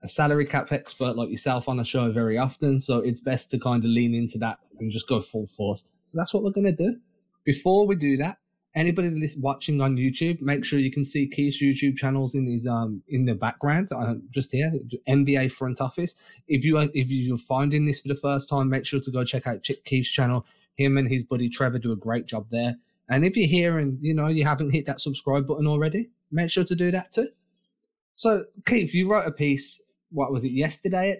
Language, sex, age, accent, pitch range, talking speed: English, male, 20-39, British, 125-165 Hz, 235 wpm